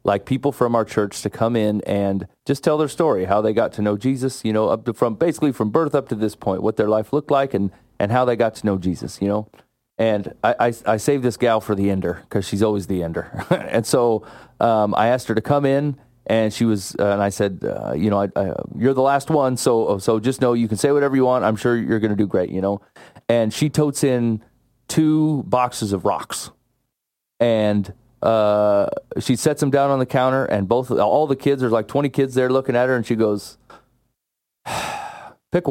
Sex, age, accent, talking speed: male, 30-49, American, 230 wpm